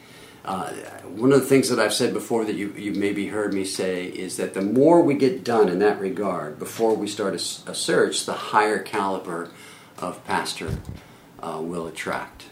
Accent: American